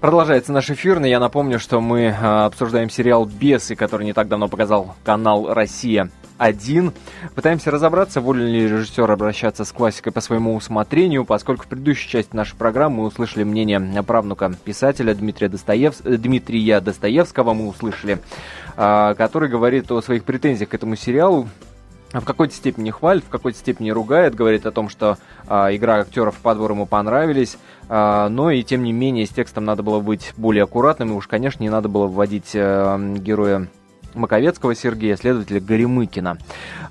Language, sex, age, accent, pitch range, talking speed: Russian, male, 20-39, native, 105-125 Hz, 155 wpm